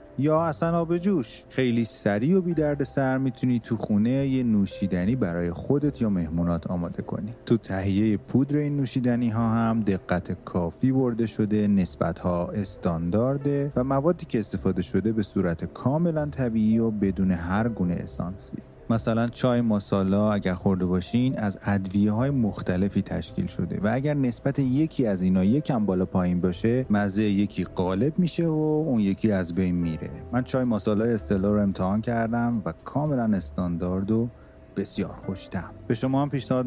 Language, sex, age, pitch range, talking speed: Persian, male, 30-49, 95-125 Hz, 155 wpm